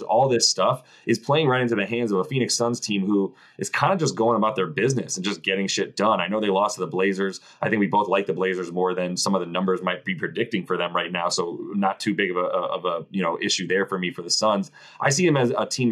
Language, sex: English, male